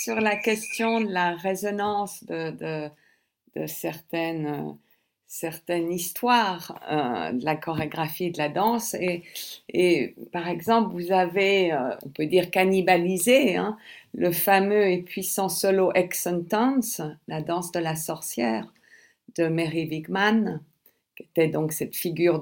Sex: female